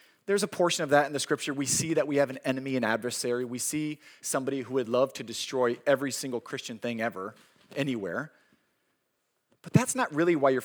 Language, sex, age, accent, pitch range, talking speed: English, male, 30-49, American, 135-185 Hz, 210 wpm